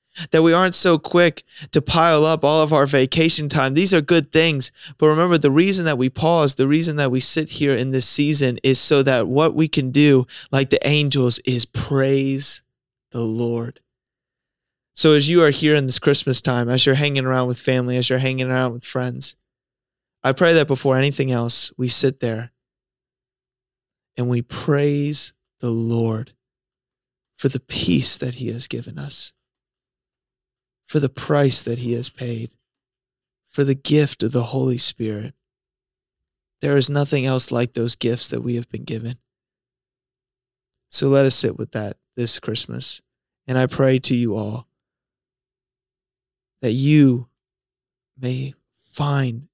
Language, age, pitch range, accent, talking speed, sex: English, 20-39, 120-140 Hz, American, 160 wpm, male